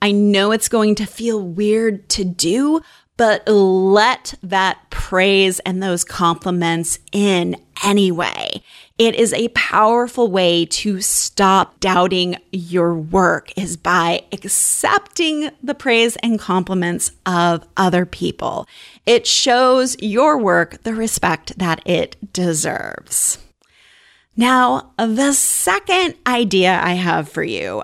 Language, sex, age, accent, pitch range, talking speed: English, female, 30-49, American, 185-235 Hz, 120 wpm